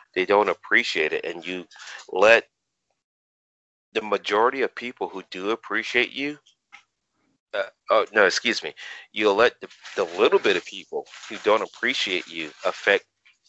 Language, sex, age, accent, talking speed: English, male, 40-59, American, 140 wpm